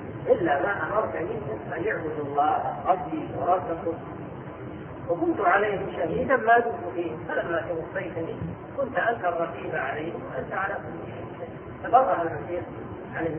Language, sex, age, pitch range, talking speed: Arabic, female, 40-59, 165-230 Hz, 95 wpm